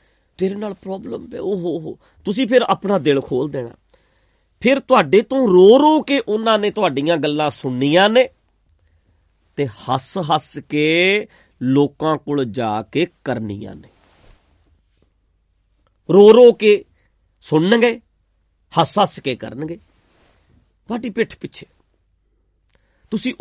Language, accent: English, Indian